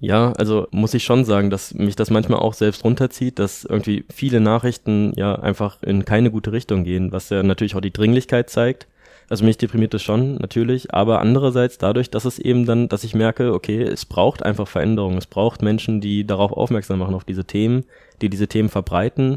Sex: male